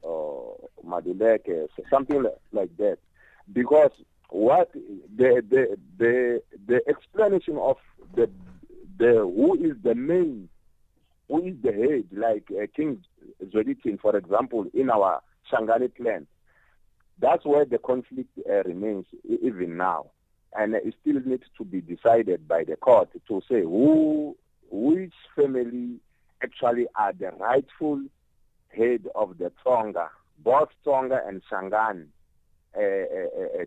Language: English